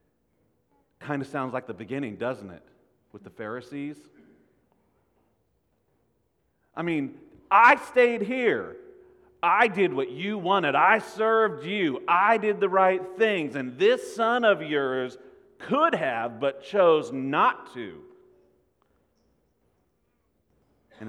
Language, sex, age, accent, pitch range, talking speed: English, male, 40-59, American, 110-165 Hz, 115 wpm